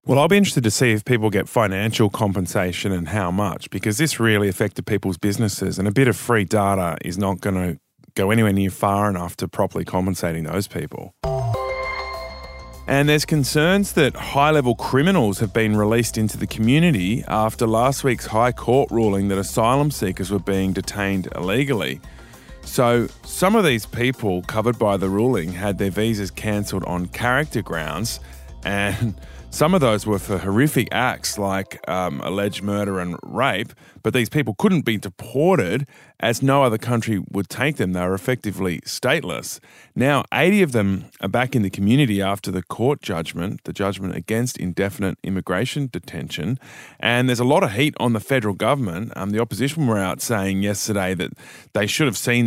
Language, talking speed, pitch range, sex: English, 175 wpm, 95-125 Hz, male